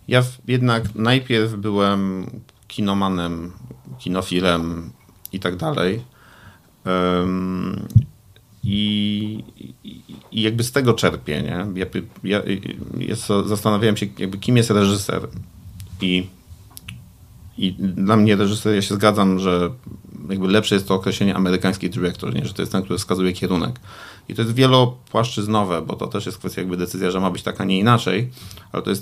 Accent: native